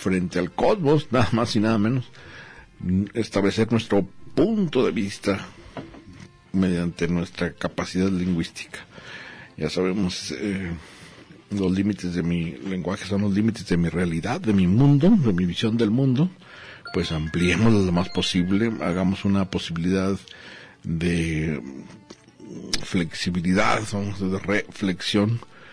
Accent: Mexican